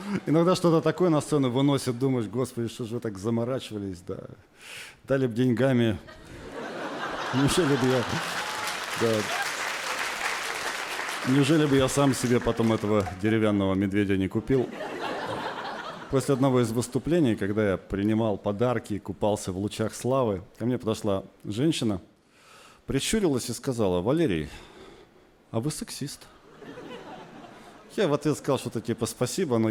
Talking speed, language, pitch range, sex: 130 wpm, Russian, 105-140 Hz, male